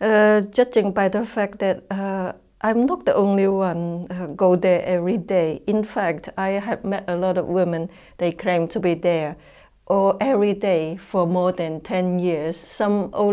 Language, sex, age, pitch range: Finnish, female, 60-79, 170-200 Hz